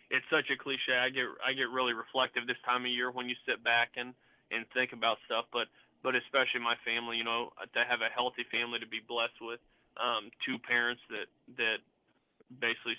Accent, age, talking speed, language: American, 20-39, 210 wpm, English